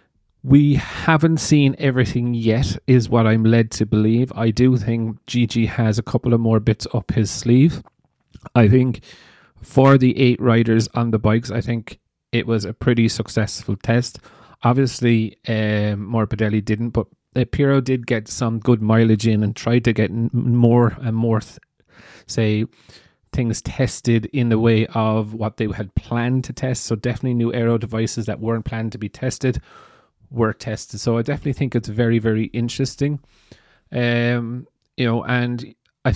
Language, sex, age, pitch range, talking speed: English, male, 30-49, 110-125 Hz, 170 wpm